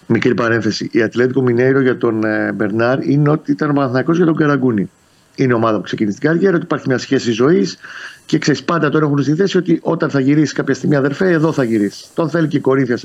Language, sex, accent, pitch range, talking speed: Greek, male, native, 115-150 Hz, 225 wpm